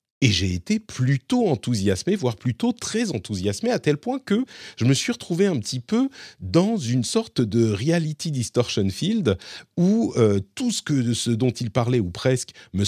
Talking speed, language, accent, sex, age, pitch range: 190 wpm, French, French, male, 40-59, 95-135 Hz